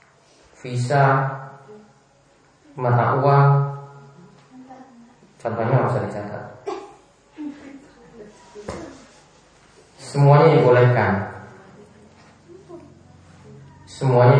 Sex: male